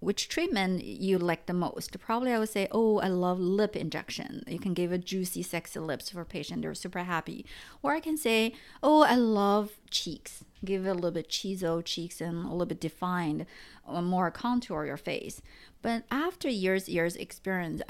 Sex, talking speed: female, 195 wpm